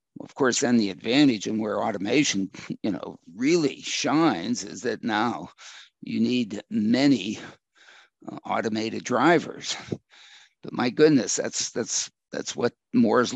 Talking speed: 130 wpm